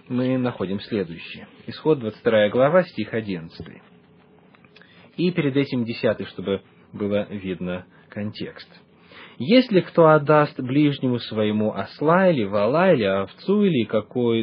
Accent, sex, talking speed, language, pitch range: native, male, 115 wpm, Russian, 120-180 Hz